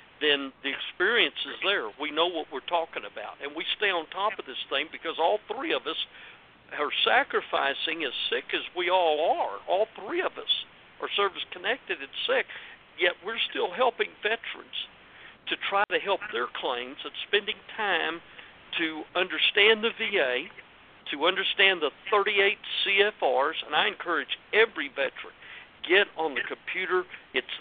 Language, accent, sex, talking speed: English, American, male, 160 wpm